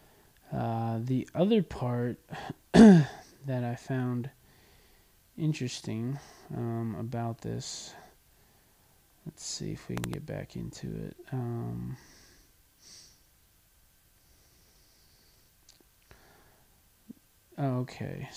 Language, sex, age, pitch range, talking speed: English, male, 20-39, 120-150 Hz, 70 wpm